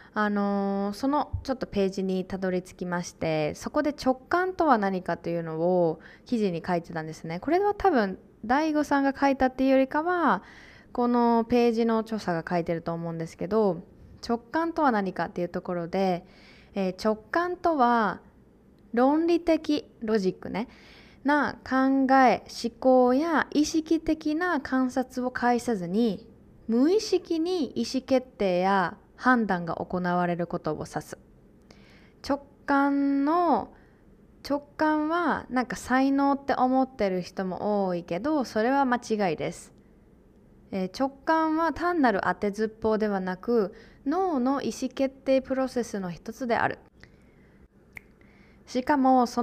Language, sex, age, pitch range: Japanese, female, 20-39, 190-275 Hz